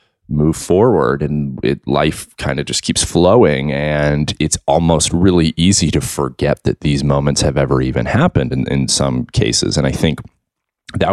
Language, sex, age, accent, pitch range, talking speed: English, male, 30-49, American, 70-85 Hz, 175 wpm